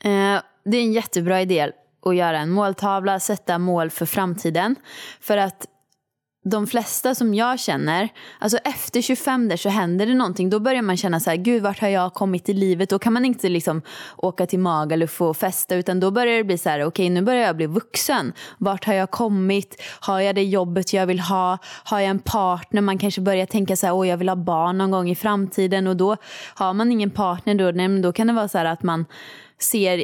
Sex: female